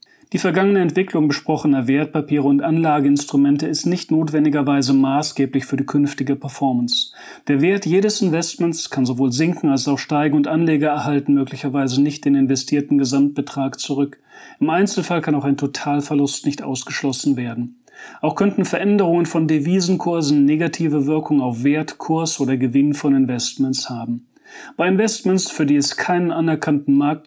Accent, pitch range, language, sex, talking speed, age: German, 140-160 Hz, German, male, 145 wpm, 40-59